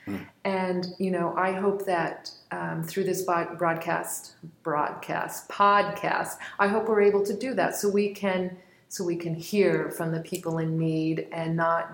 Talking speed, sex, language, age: 170 wpm, female, English, 40-59